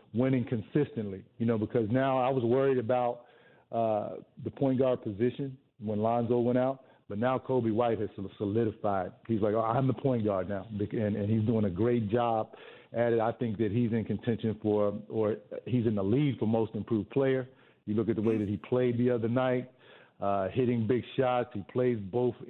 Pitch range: 115-140 Hz